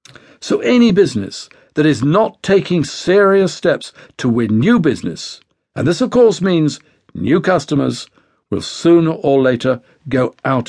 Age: 60-79